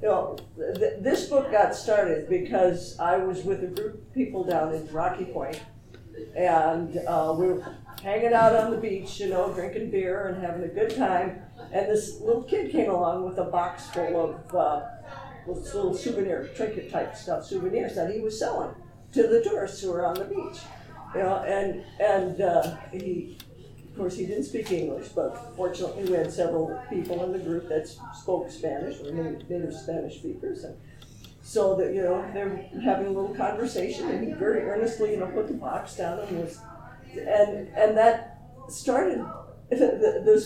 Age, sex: 50-69, female